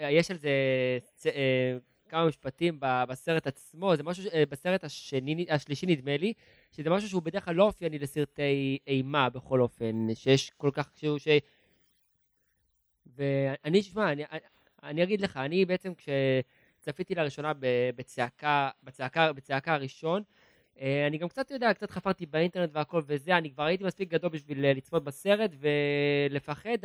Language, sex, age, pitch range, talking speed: Hebrew, male, 20-39, 140-175 Hz, 130 wpm